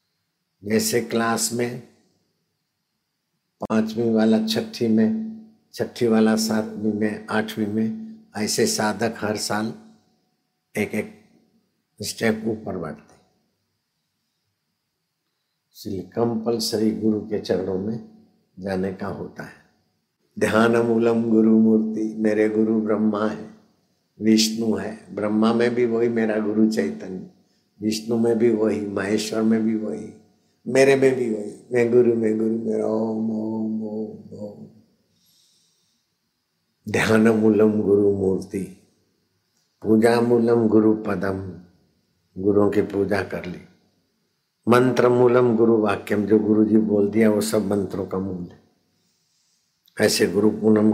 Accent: native